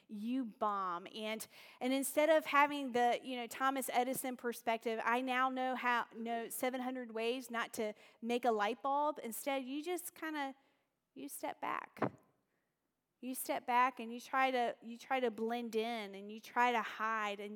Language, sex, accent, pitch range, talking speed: English, female, American, 230-275 Hz, 180 wpm